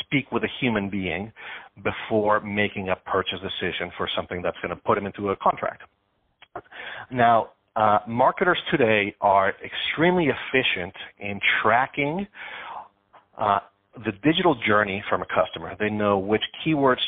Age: 40-59